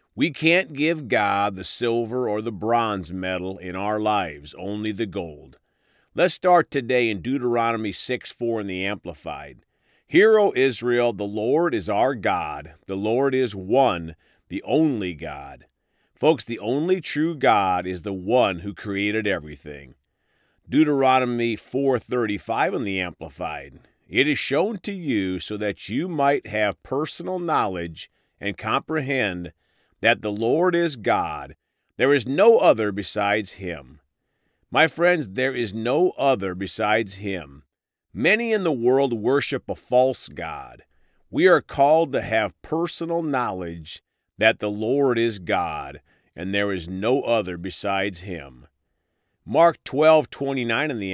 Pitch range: 95-135 Hz